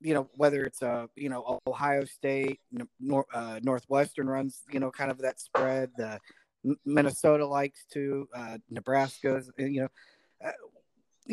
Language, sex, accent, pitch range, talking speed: English, male, American, 135-175 Hz, 140 wpm